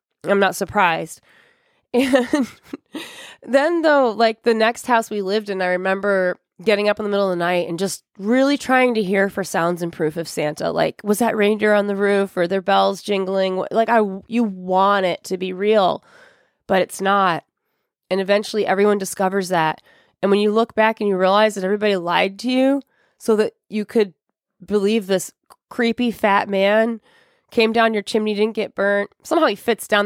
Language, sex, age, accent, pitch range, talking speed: English, female, 20-39, American, 190-230 Hz, 190 wpm